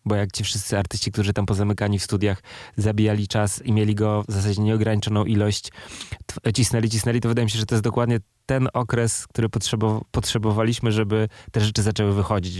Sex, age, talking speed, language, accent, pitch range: male, 20-39, 195 wpm, Polish, native, 95-110 Hz